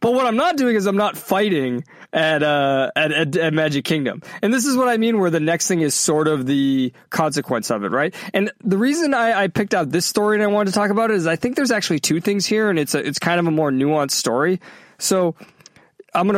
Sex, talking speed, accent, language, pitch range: male, 260 wpm, American, English, 150-210 Hz